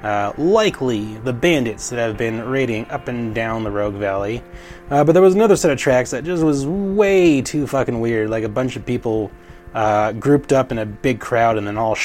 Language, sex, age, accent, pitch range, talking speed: English, male, 30-49, American, 105-135 Hz, 220 wpm